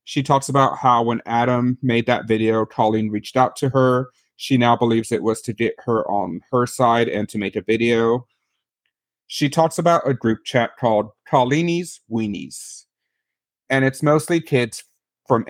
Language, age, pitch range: English, 40-59, 115-135 Hz